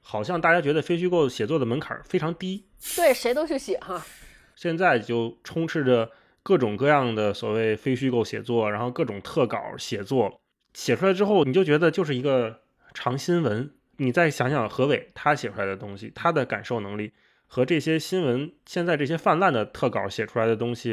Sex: male